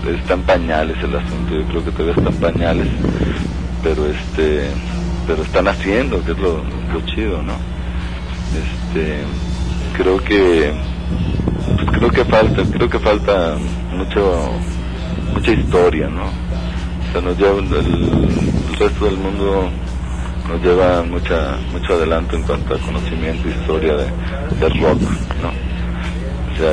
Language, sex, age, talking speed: Spanish, male, 40-59, 130 wpm